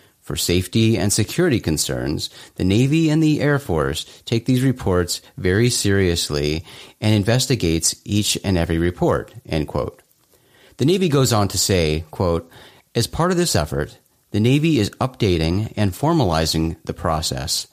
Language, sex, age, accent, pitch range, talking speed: English, male, 30-49, American, 85-120 Hz, 150 wpm